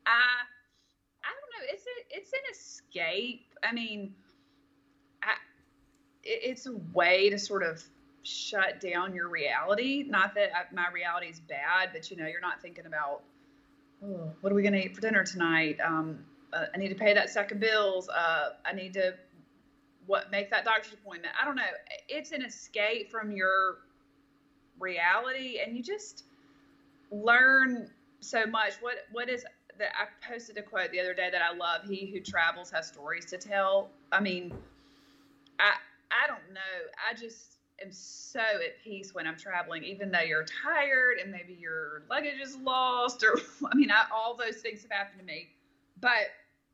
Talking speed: 175 wpm